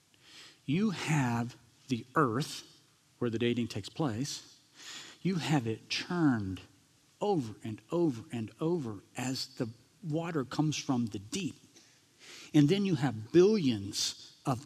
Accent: American